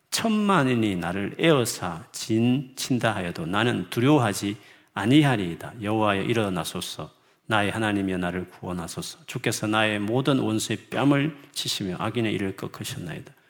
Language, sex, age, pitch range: Korean, male, 40-59, 105-140 Hz